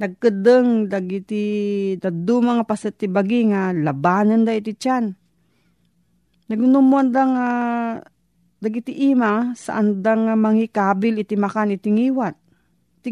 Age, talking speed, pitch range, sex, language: 40-59, 100 wpm, 190-235 Hz, female, Filipino